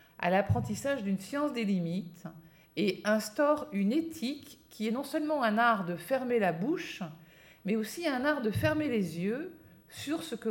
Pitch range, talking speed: 180-255 Hz, 175 wpm